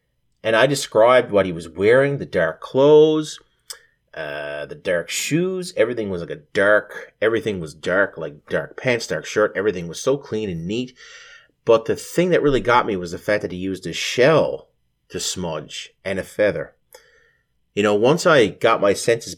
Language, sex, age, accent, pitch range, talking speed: English, male, 30-49, American, 95-130 Hz, 185 wpm